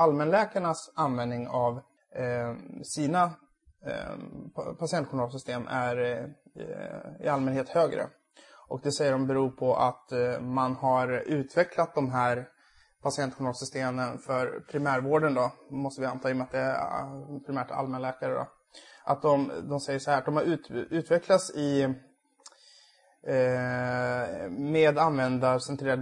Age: 20-39